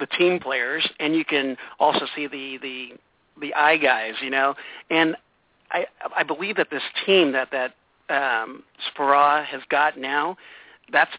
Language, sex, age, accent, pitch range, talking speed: English, male, 50-69, American, 140-160 Hz, 160 wpm